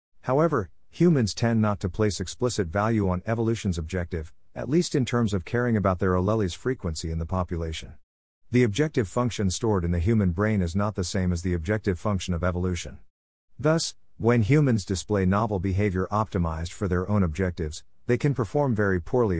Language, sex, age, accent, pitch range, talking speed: English, male, 50-69, American, 90-120 Hz, 180 wpm